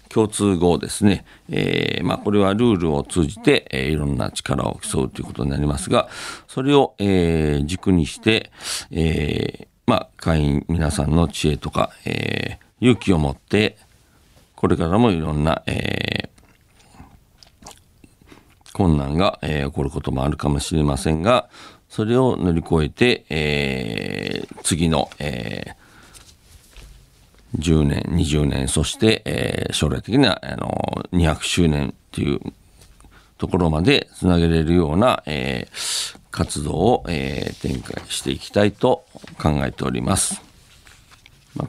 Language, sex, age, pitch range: Japanese, male, 50-69, 75-100 Hz